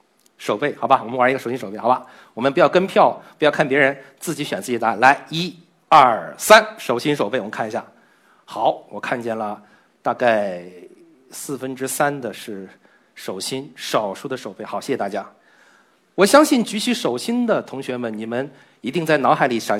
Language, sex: Chinese, male